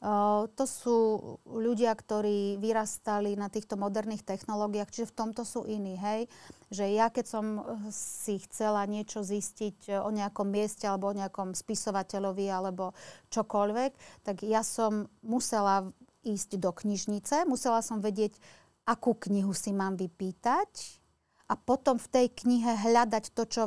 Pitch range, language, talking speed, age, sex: 205-235 Hz, Slovak, 135 wpm, 30-49, female